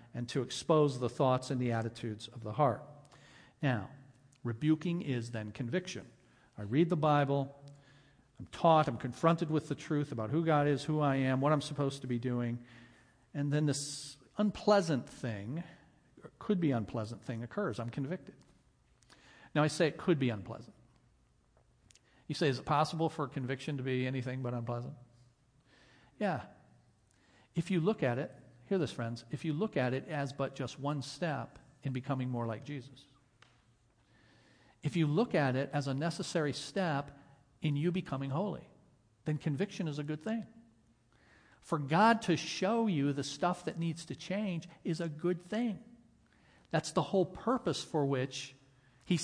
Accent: American